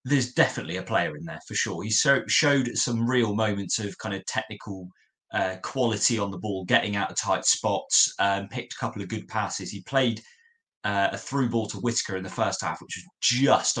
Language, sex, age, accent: English, male, 20-39, British